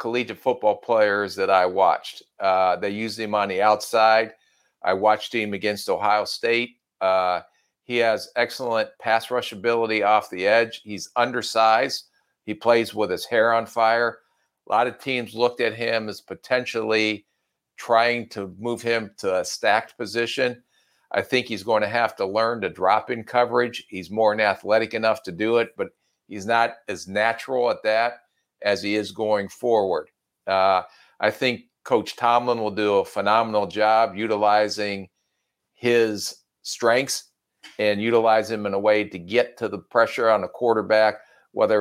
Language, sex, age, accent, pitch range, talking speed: English, male, 50-69, American, 100-115 Hz, 165 wpm